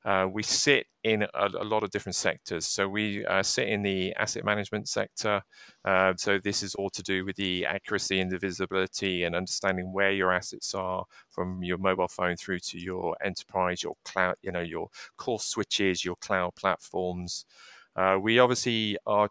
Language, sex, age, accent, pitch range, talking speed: English, male, 30-49, British, 90-105 Hz, 185 wpm